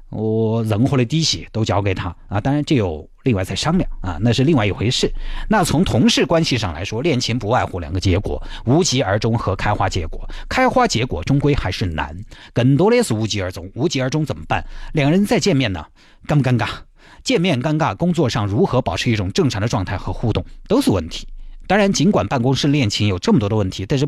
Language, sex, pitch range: Chinese, male, 100-150 Hz